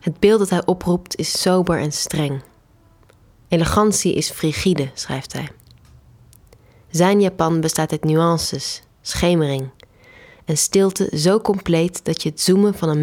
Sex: female